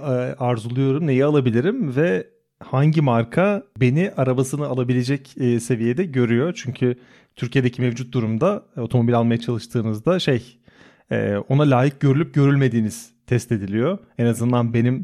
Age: 30-49